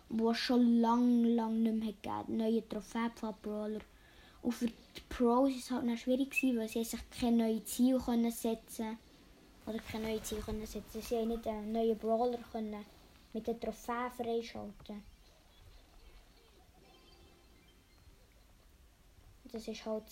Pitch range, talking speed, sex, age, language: 220-250 Hz, 140 wpm, female, 20-39, German